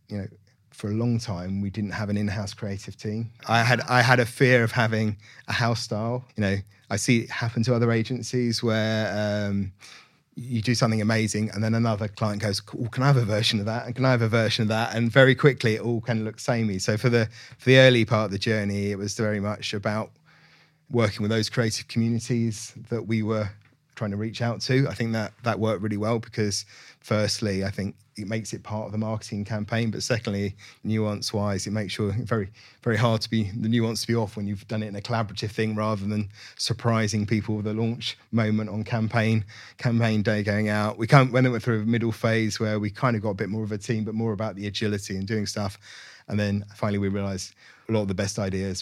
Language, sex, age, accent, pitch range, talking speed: English, male, 30-49, British, 100-115 Hz, 235 wpm